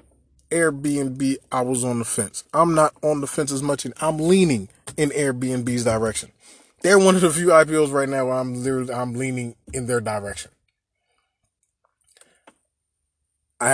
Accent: American